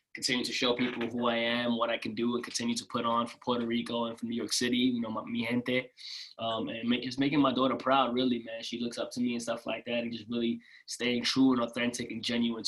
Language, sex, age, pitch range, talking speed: English, male, 20-39, 120-130 Hz, 265 wpm